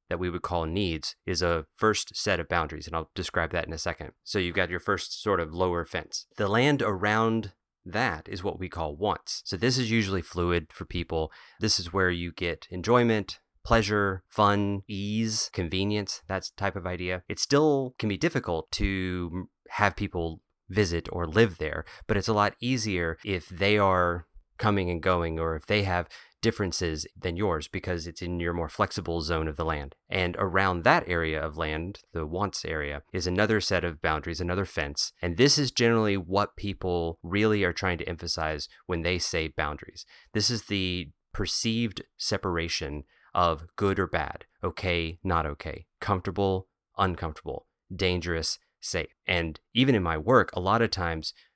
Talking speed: 180 wpm